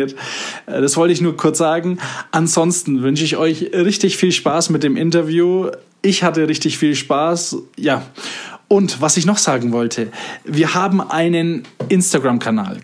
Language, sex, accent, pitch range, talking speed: German, male, German, 130-170 Hz, 150 wpm